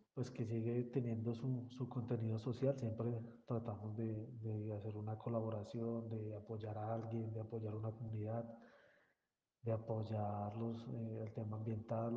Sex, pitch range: male, 110-120 Hz